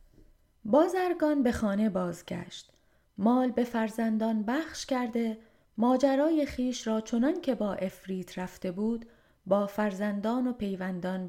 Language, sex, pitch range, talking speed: Persian, female, 195-245 Hz, 115 wpm